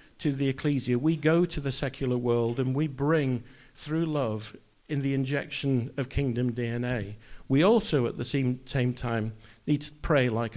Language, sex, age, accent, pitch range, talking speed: English, male, 50-69, British, 125-180 Hz, 175 wpm